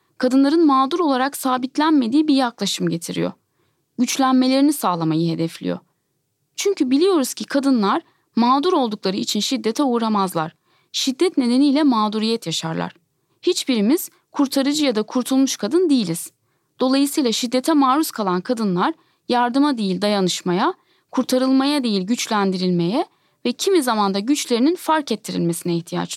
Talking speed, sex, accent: 110 wpm, female, native